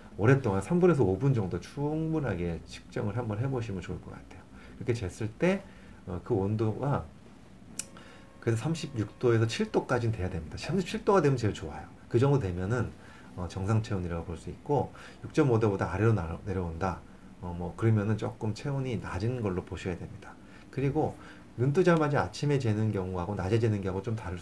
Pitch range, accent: 95-130 Hz, native